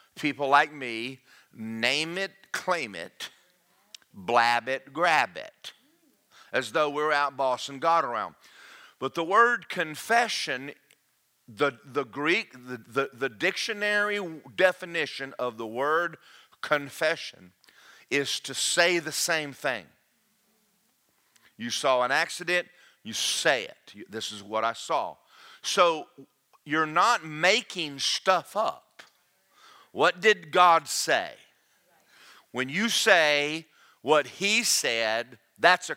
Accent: American